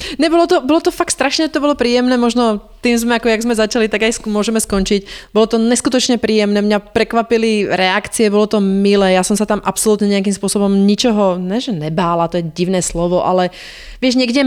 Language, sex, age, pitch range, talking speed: Czech, female, 30-49, 180-215 Hz, 200 wpm